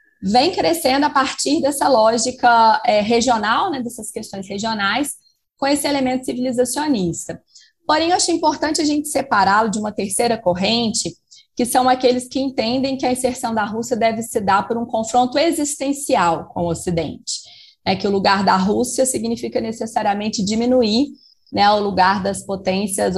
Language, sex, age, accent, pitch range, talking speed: Portuguese, female, 20-39, Brazilian, 195-260 Hz, 160 wpm